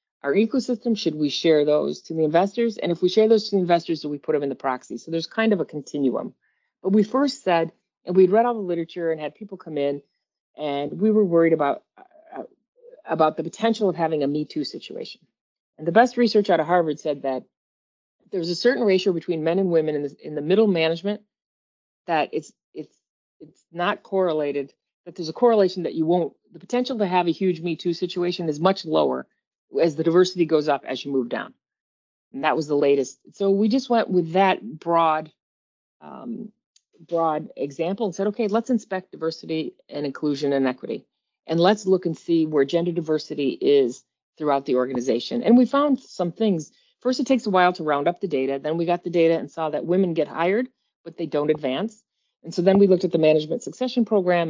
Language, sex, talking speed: English, female, 210 wpm